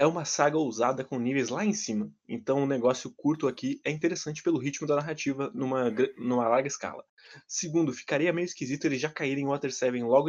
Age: 20-39